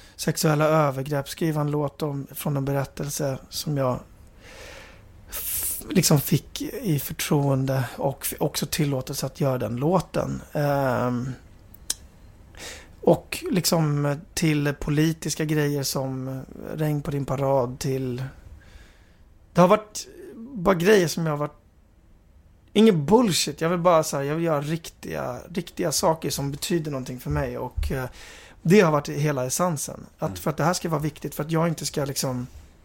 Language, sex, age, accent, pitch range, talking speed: Swedish, male, 30-49, native, 100-155 Hz, 155 wpm